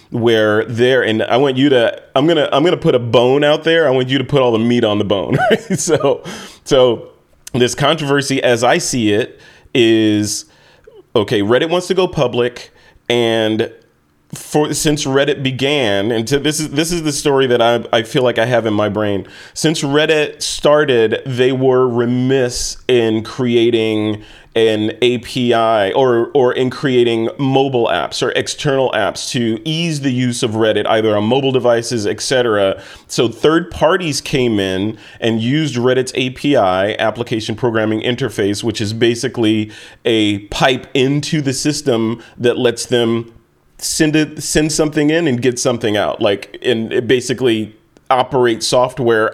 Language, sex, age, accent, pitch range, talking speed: English, male, 30-49, American, 110-140 Hz, 165 wpm